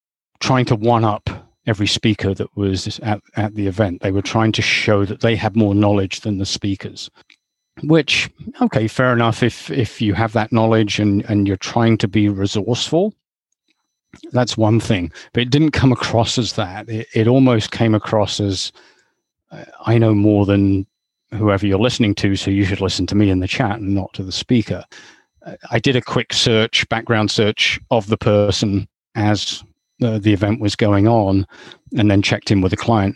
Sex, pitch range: male, 100-115 Hz